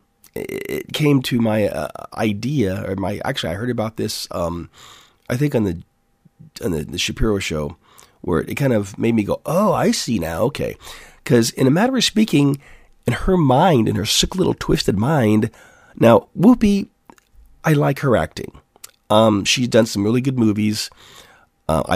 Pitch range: 105-135 Hz